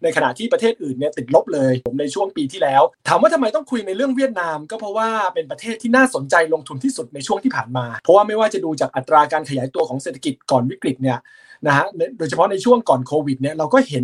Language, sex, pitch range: Thai, male, 135-215 Hz